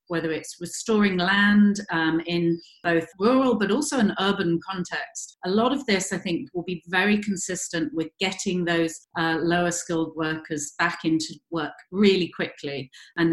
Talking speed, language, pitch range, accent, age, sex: 160 wpm, English, 165-200 Hz, British, 40-59, female